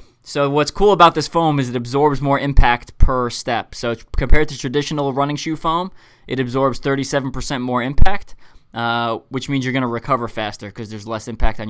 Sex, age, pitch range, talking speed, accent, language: male, 20-39, 120-145 Hz, 195 wpm, American, English